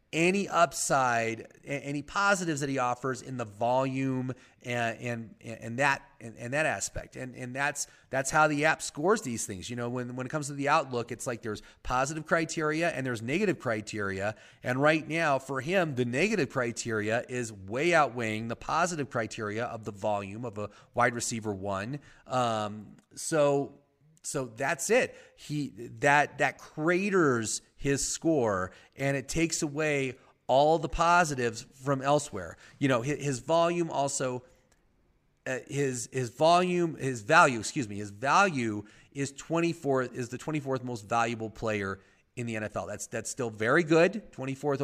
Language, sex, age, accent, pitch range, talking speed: English, male, 30-49, American, 120-145 Hz, 165 wpm